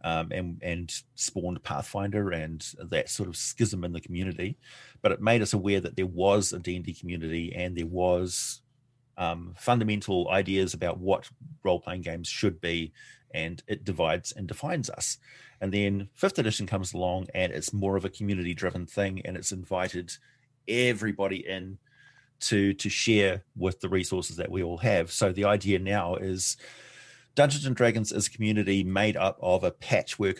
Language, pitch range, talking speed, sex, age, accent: English, 90-110 Hz, 170 wpm, male, 30-49, Australian